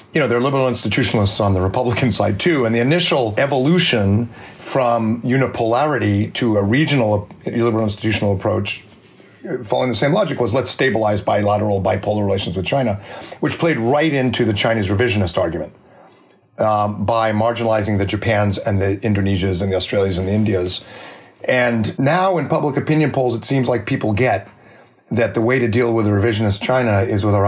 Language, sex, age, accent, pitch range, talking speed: English, male, 40-59, American, 100-125 Hz, 175 wpm